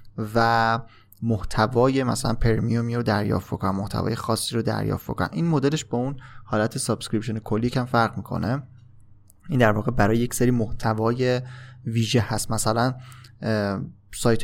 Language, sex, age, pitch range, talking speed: Persian, male, 20-39, 110-130 Hz, 145 wpm